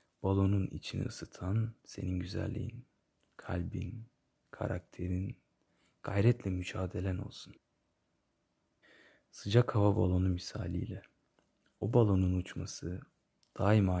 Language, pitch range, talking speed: Turkish, 90-110 Hz, 75 wpm